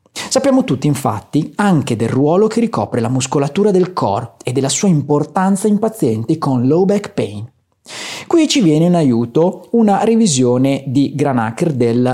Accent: native